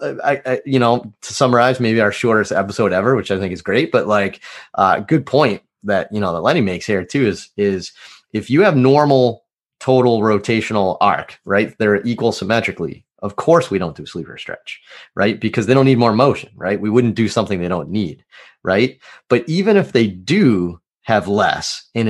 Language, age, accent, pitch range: English, 30-49, American, 100-125 Hz